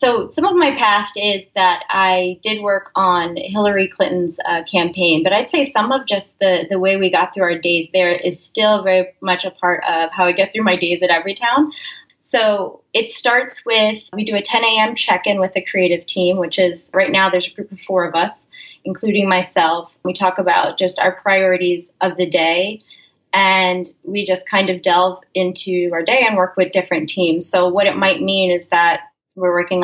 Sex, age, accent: female, 20-39, American